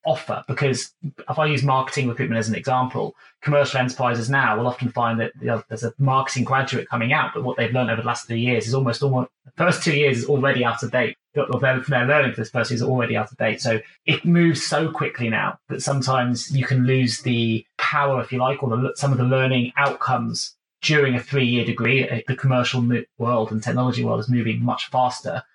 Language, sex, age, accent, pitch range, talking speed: English, male, 20-39, British, 120-135 Hz, 210 wpm